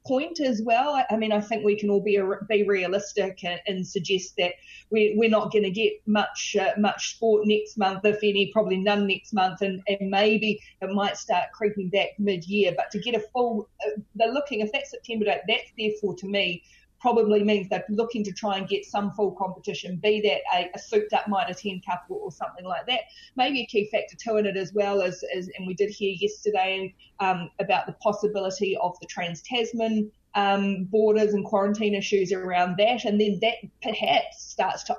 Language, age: English, 30-49